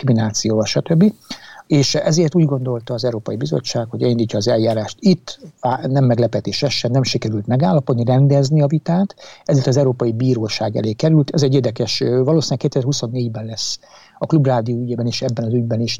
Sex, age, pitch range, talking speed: male, 60-79, 115-140 Hz, 160 wpm